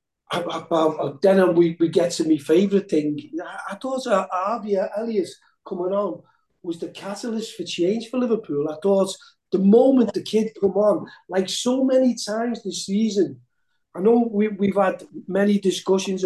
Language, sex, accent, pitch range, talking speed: English, male, British, 180-220 Hz, 170 wpm